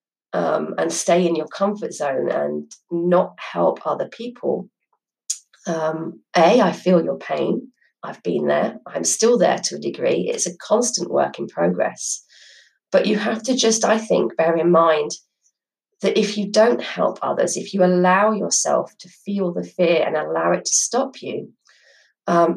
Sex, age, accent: female, 30-49, British